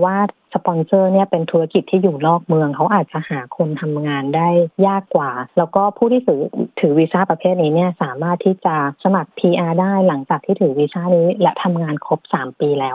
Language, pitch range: Thai, 150-185 Hz